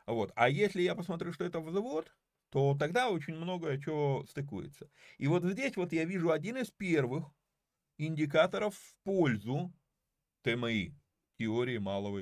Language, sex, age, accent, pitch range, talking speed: Russian, male, 30-49, native, 125-180 Hz, 140 wpm